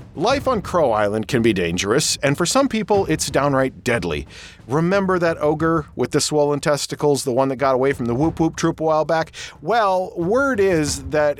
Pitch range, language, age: 130-180 Hz, English, 40-59